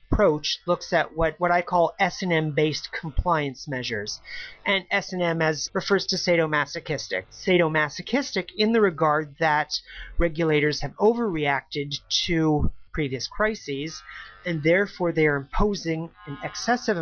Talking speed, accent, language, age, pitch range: 125 wpm, American, English, 40-59, 150-185 Hz